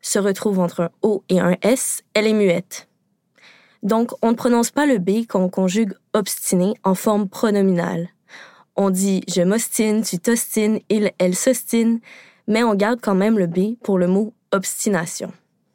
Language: French